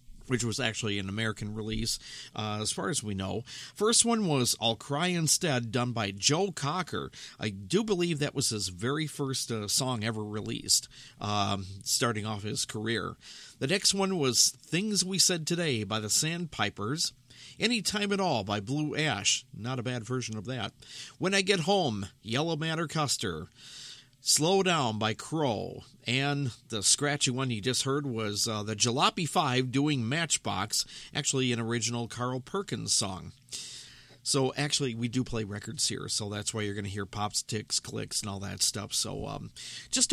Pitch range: 115-155 Hz